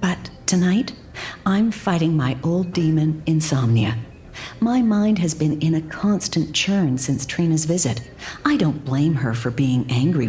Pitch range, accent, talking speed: 135-200 Hz, American, 150 wpm